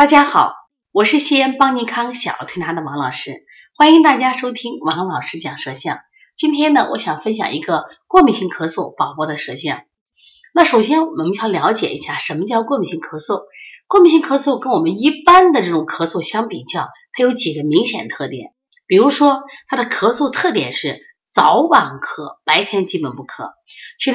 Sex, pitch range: female, 185-300 Hz